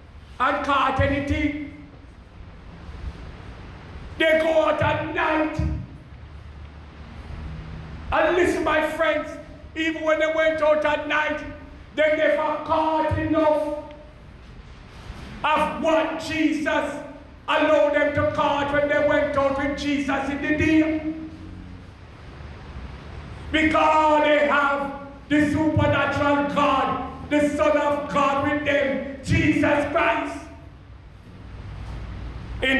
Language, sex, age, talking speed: English, male, 50-69, 100 wpm